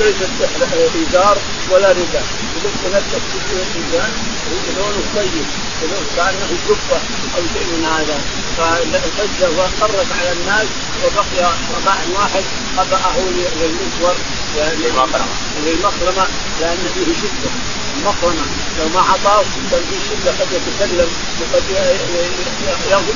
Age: 40-59